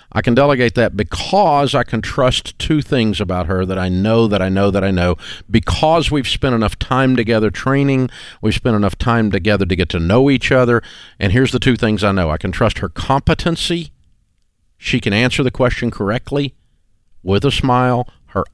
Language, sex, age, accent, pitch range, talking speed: English, male, 50-69, American, 100-130 Hz, 200 wpm